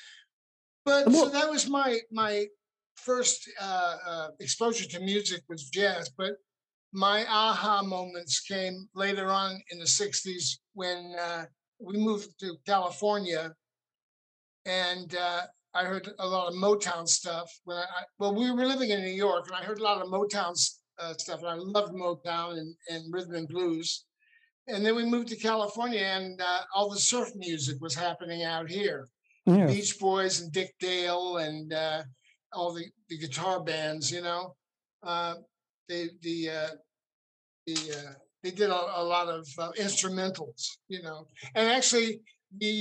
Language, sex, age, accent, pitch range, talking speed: English, male, 50-69, American, 170-205 Hz, 155 wpm